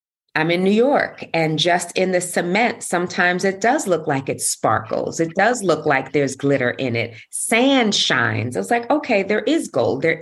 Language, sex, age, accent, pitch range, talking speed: English, female, 30-49, American, 145-180 Hz, 195 wpm